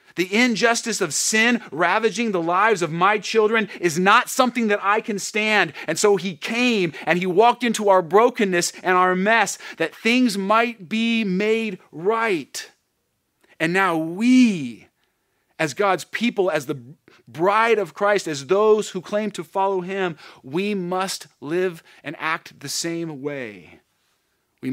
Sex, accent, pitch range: male, American, 135-200 Hz